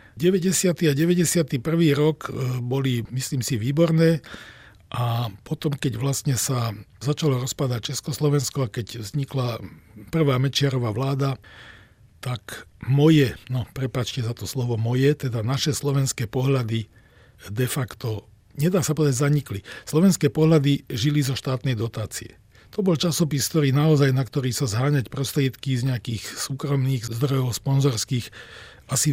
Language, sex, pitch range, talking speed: Czech, male, 120-150 Hz, 130 wpm